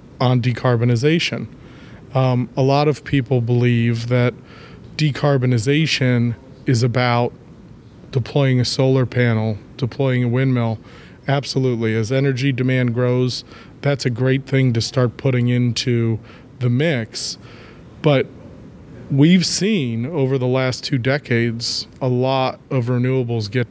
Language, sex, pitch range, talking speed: English, male, 120-140 Hz, 120 wpm